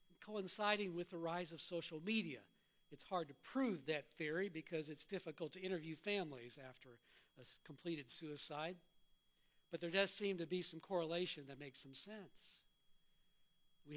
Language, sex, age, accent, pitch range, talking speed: English, male, 50-69, American, 160-205 Hz, 155 wpm